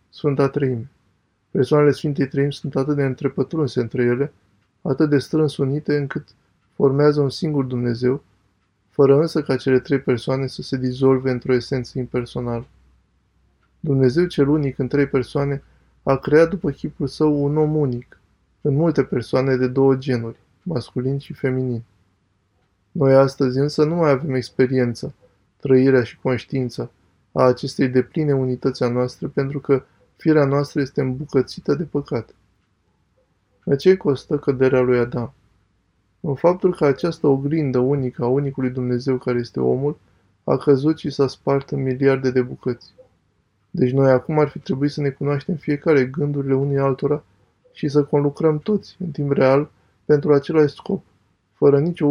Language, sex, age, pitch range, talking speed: Romanian, male, 20-39, 125-145 Hz, 150 wpm